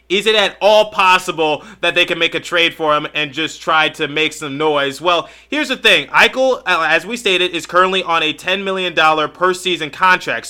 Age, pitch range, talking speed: 30-49, 165-200 Hz, 210 wpm